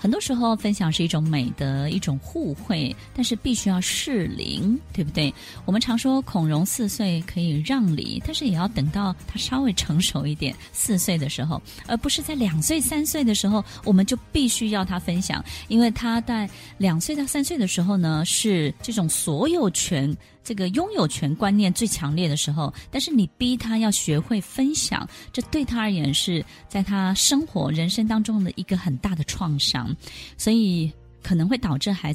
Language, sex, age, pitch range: Chinese, female, 20-39, 155-225 Hz